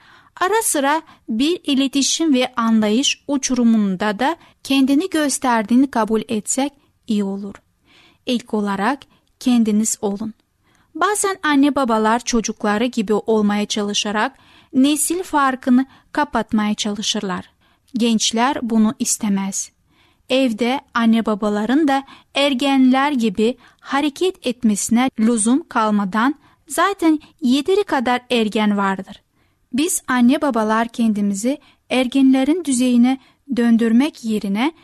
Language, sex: Turkish, female